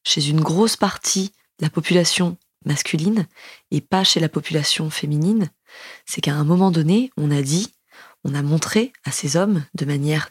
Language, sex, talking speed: French, female, 175 wpm